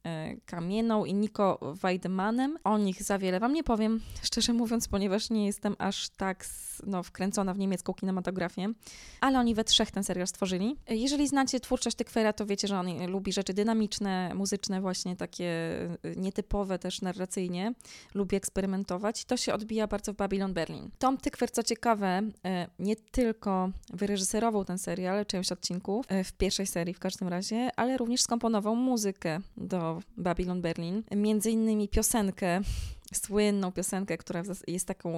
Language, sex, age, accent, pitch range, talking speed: Polish, female, 20-39, native, 185-215 Hz, 150 wpm